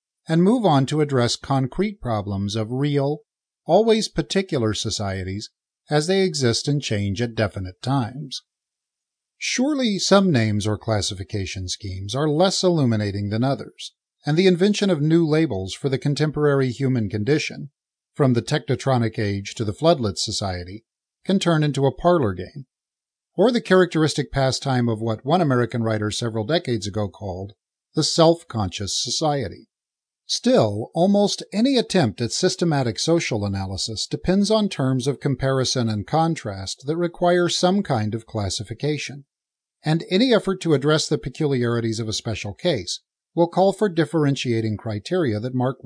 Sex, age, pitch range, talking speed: male, 50-69, 110-170 Hz, 145 wpm